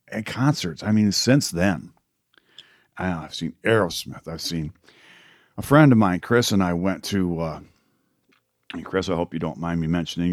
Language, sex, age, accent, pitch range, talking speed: English, male, 50-69, American, 85-105 Hz, 185 wpm